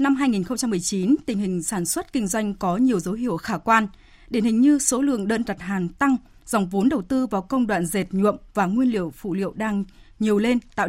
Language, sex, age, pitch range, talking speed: Vietnamese, female, 20-39, 200-255 Hz, 225 wpm